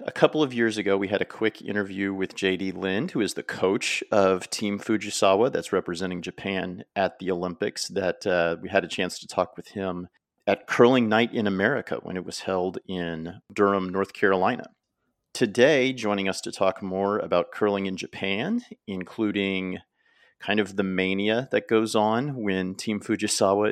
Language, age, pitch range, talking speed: English, 40-59, 90-105 Hz, 175 wpm